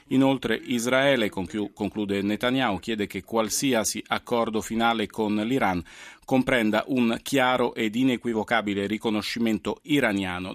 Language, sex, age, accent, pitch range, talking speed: Italian, male, 40-59, native, 105-125 Hz, 100 wpm